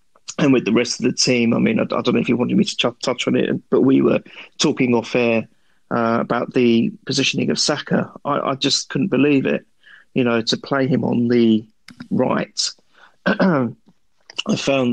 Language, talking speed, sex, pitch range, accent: English, 195 wpm, male, 120-135 Hz, British